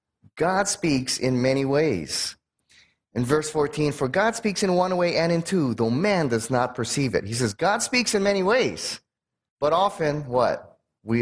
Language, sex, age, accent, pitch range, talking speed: English, male, 30-49, American, 125-185 Hz, 180 wpm